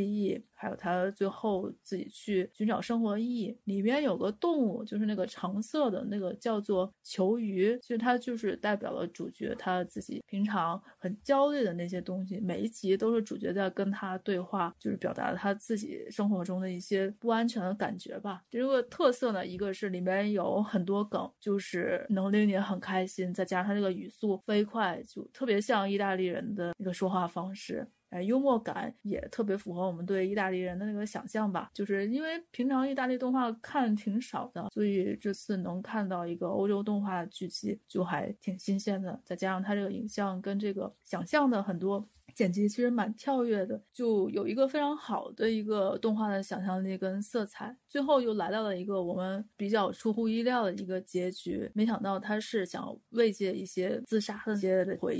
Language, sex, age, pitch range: Chinese, female, 30-49, 190-225 Hz